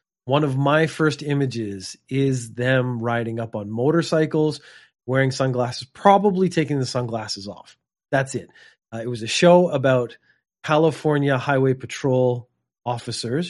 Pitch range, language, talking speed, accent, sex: 120-180 Hz, English, 135 wpm, American, male